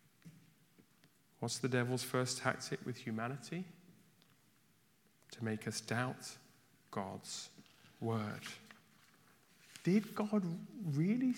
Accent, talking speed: British, 85 wpm